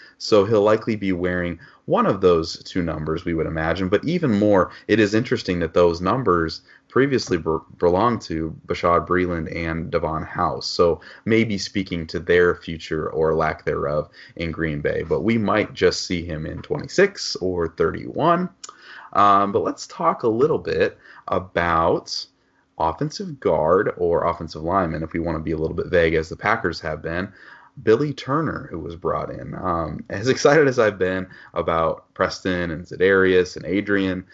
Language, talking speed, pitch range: English, 170 wpm, 85-110 Hz